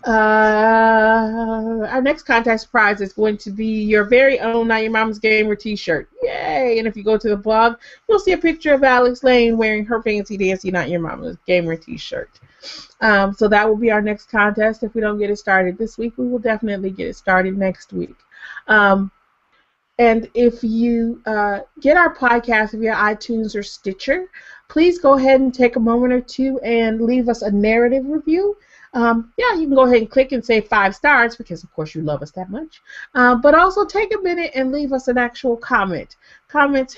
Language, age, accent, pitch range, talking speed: English, 30-49, American, 210-270 Hz, 200 wpm